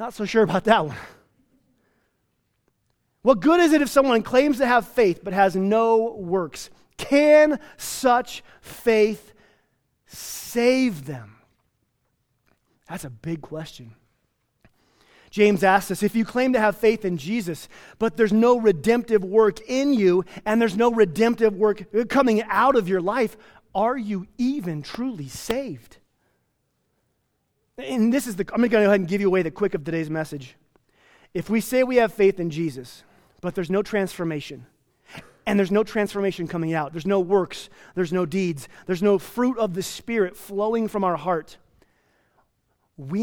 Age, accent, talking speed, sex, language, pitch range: 30-49, American, 160 wpm, male, English, 165-225 Hz